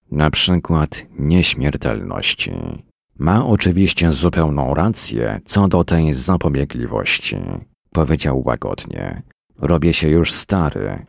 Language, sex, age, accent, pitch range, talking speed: Polish, male, 40-59, native, 75-95 Hz, 90 wpm